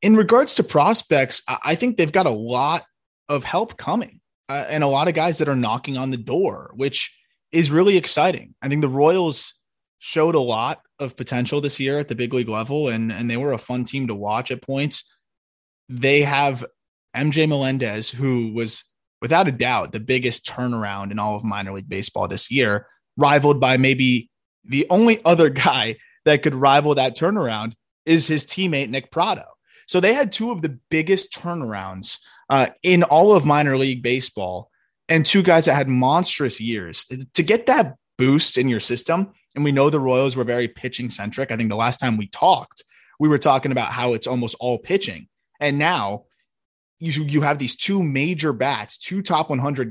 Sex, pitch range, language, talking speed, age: male, 120-155 Hz, English, 190 wpm, 20-39